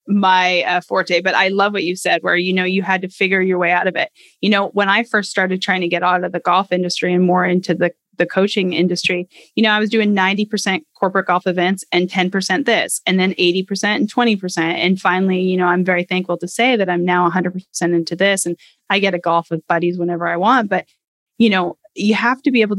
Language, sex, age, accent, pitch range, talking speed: English, female, 10-29, American, 180-210 Hz, 260 wpm